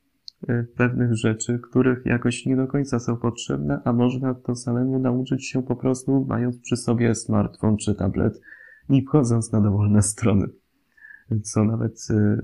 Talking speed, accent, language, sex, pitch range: 145 wpm, native, Polish, male, 105-125 Hz